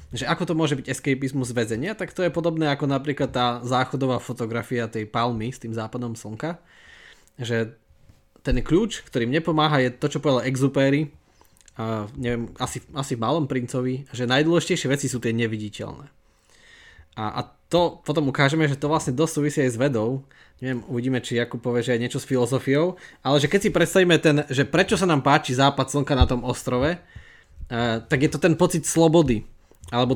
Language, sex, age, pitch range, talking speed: Slovak, male, 20-39, 120-150 Hz, 180 wpm